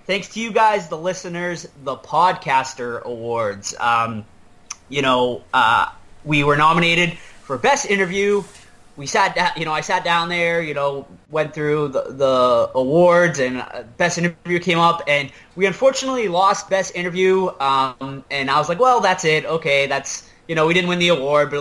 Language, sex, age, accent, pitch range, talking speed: English, male, 20-39, American, 130-175 Hz, 180 wpm